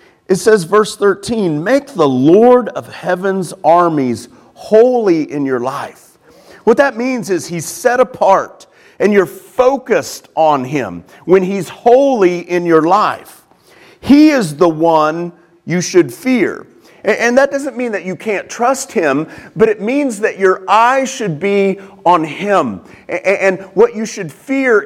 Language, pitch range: English, 180-255 Hz